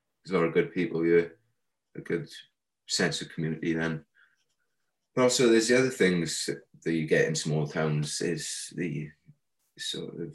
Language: English